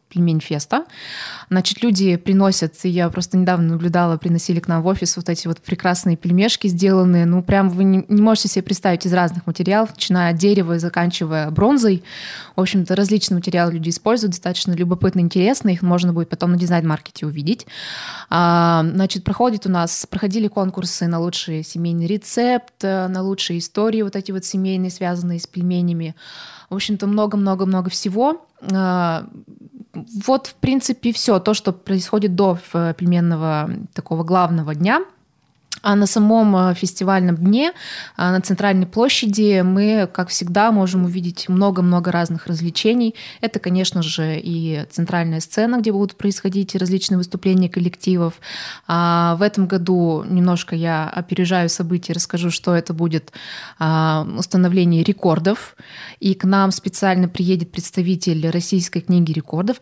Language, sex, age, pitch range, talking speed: Russian, female, 20-39, 175-200 Hz, 140 wpm